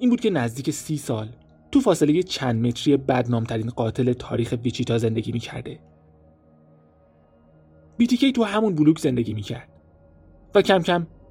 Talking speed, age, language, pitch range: 140 wpm, 30-49, Persian, 110-145 Hz